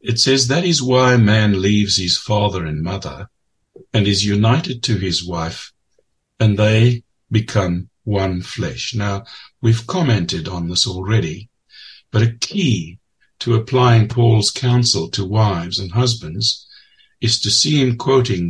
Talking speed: 145 wpm